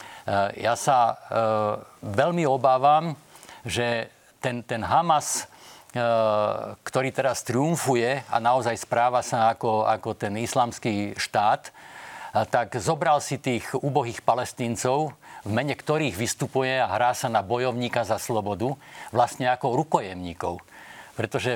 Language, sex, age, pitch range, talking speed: Slovak, male, 50-69, 115-135 Hz, 115 wpm